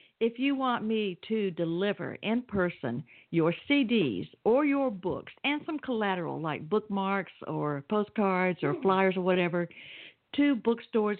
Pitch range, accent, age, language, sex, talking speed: 165-215 Hz, American, 60-79, English, female, 140 wpm